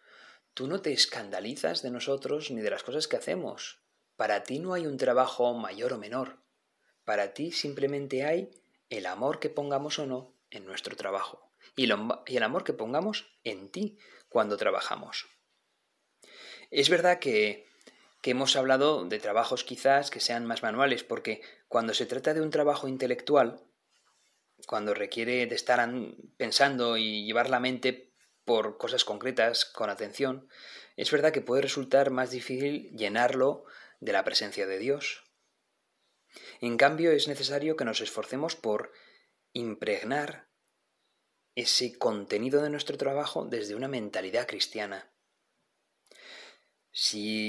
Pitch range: 120-150 Hz